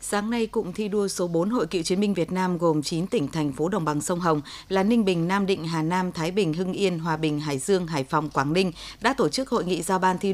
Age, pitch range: 20-39, 170-215 Hz